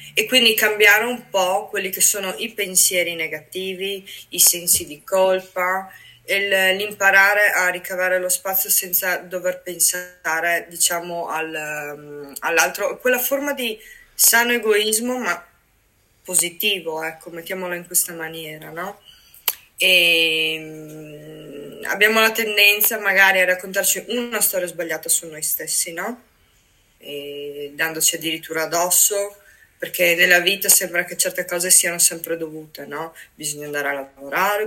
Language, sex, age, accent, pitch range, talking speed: Italian, female, 20-39, native, 160-195 Hz, 130 wpm